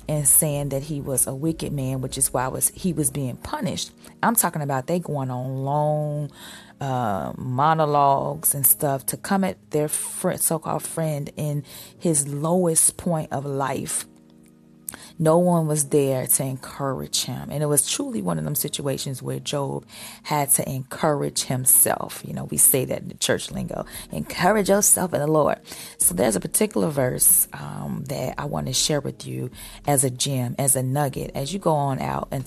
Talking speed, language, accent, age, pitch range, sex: 185 wpm, English, American, 30-49, 130-160 Hz, female